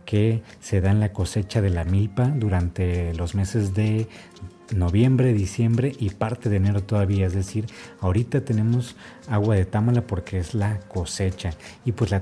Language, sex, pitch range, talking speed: Spanish, male, 95-115 Hz, 165 wpm